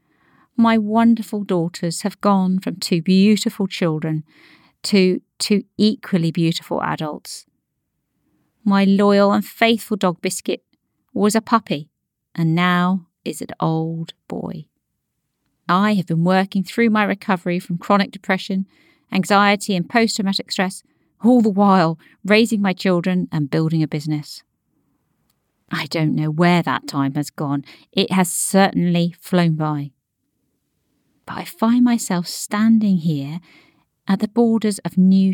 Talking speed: 130 wpm